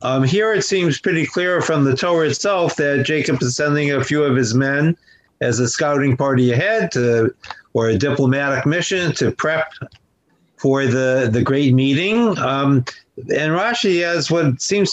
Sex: male